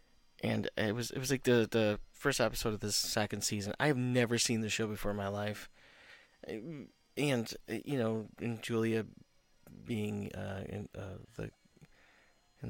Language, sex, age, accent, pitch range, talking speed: English, male, 30-49, American, 105-120 Hz, 165 wpm